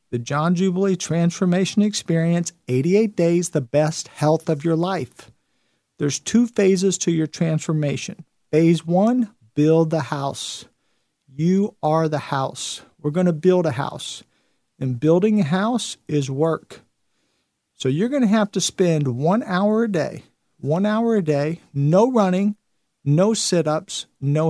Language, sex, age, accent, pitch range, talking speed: English, male, 50-69, American, 150-185 Hz, 145 wpm